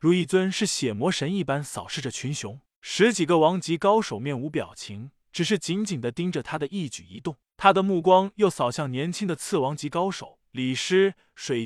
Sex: male